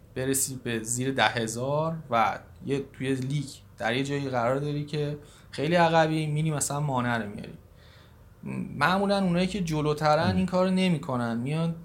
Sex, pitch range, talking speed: male, 125-155 Hz, 165 wpm